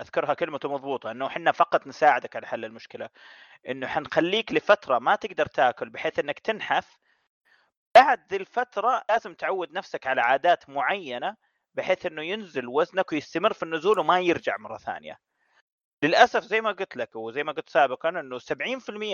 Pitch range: 150-210 Hz